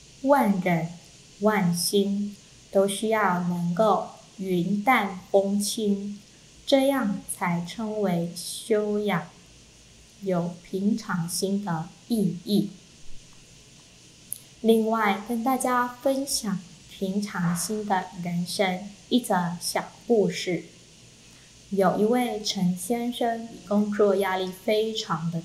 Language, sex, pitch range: Chinese, female, 180-220 Hz